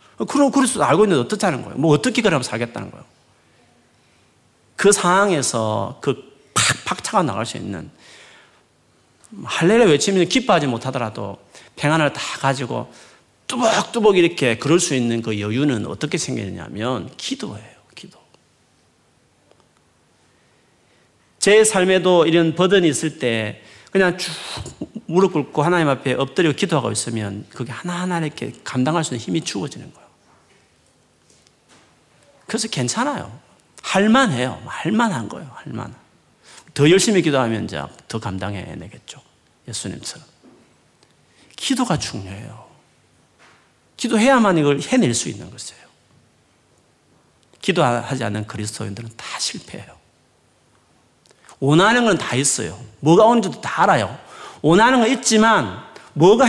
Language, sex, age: Korean, male, 40-59